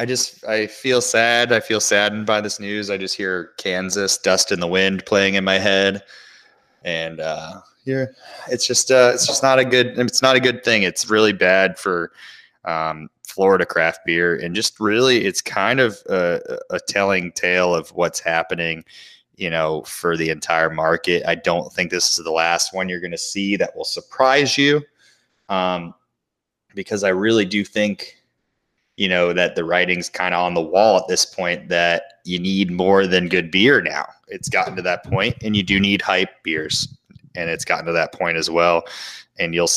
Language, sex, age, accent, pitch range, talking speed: English, male, 20-39, American, 85-110 Hz, 195 wpm